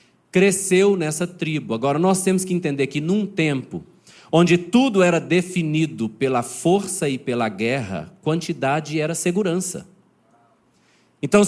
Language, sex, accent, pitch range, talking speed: Portuguese, male, Brazilian, 145-185 Hz, 125 wpm